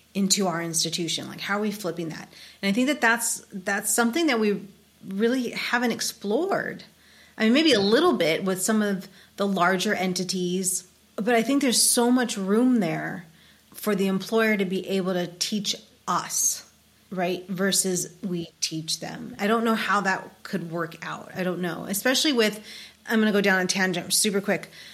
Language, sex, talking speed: English, female, 185 wpm